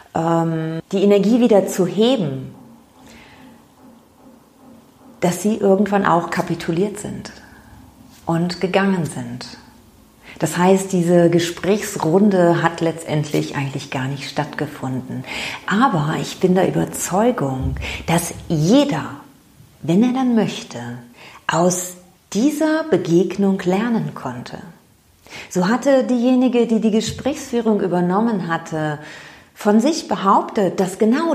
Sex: female